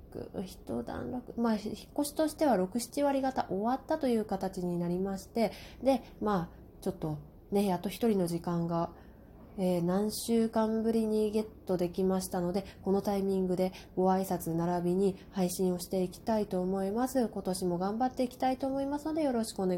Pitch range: 190-245 Hz